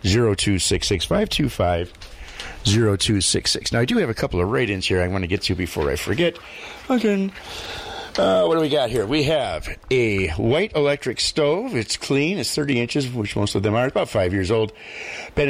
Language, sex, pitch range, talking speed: English, male, 100-130 Hz, 190 wpm